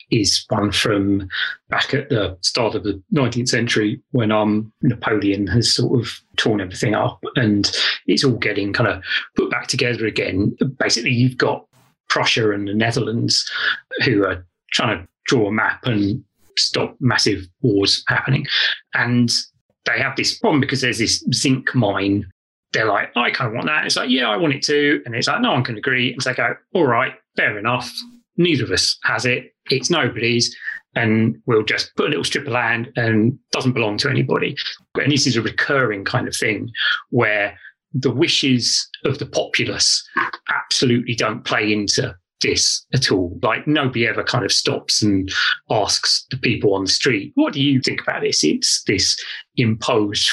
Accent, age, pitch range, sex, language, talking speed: British, 30-49, 105-130 Hz, male, English, 180 wpm